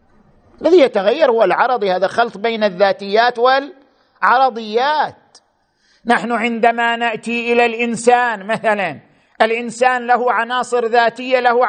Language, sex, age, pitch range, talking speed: Arabic, male, 50-69, 230-275 Hz, 105 wpm